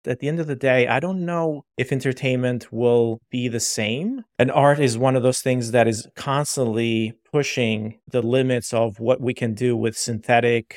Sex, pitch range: male, 115-140 Hz